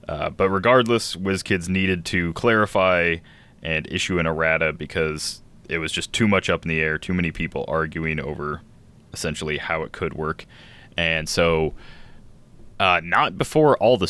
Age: 20-39